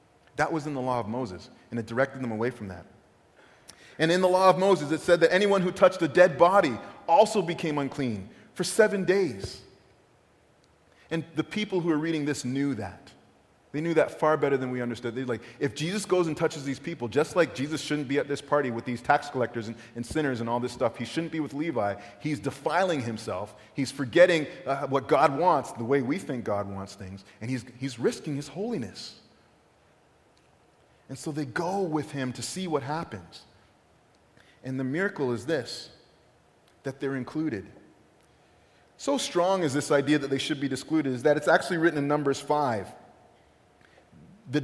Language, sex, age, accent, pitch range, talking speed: English, male, 30-49, American, 130-165 Hz, 195 wpm